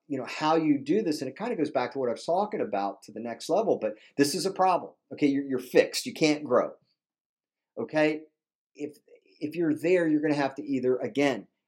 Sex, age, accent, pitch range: male, 50-69, American, 125-170 Hz